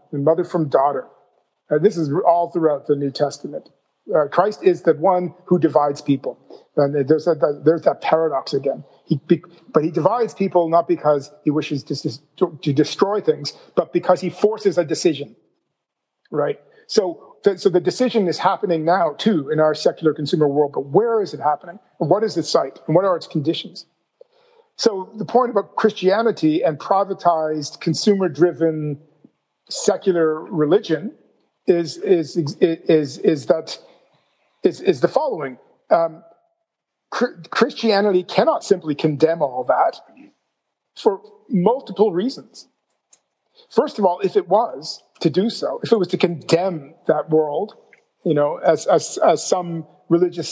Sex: male